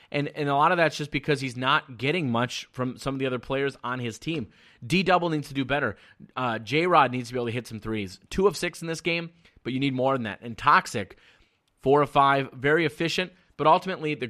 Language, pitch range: English, 125-155 Hz